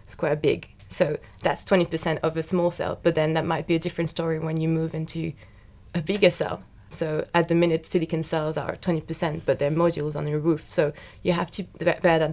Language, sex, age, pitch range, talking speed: English, female, 20-39, 150-170 Hz, 210 wpm